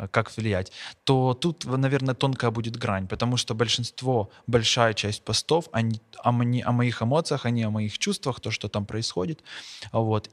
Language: Russian